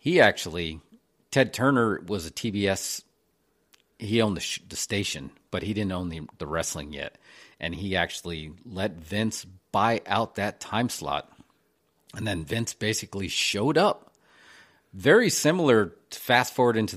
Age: 40-59